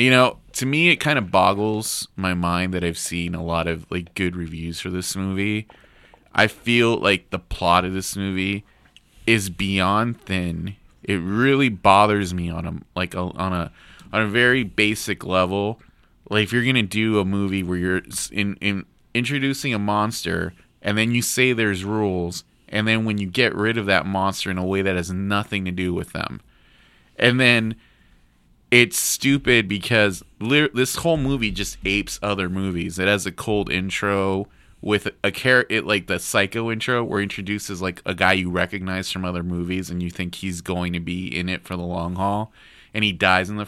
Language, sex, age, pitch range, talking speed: English, male, 30-49, 90-110 Hz, 195 wpm